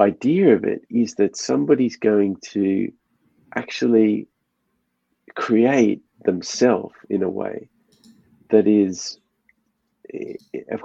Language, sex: English, male